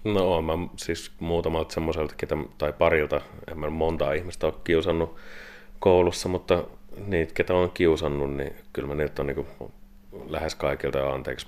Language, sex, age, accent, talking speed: Finnish, male, 30-49, native, 150 wpm